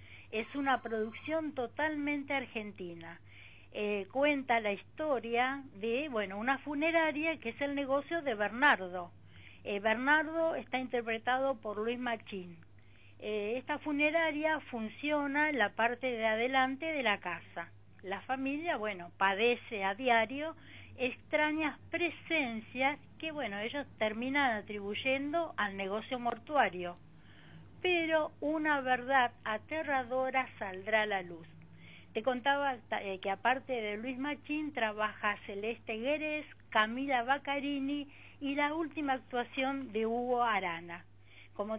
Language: Spanish